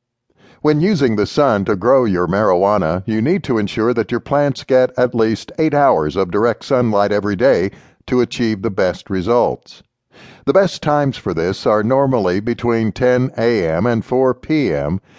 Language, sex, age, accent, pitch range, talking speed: English, male, 60-79, American, 110-135 Hz, 170 wpm